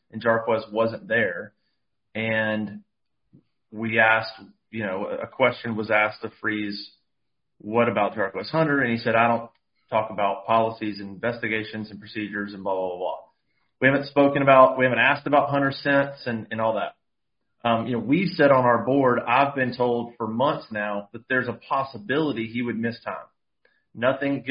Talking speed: 180 wpm